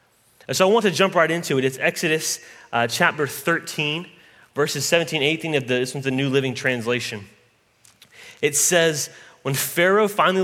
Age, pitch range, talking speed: 30-49, 130-175 Hz, 180 wpm